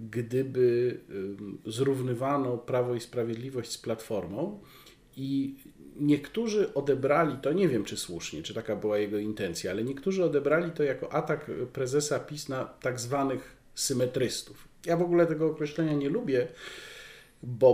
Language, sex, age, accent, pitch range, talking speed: Polish, male, 40-59, native, 125-150 Hz, 135 wpm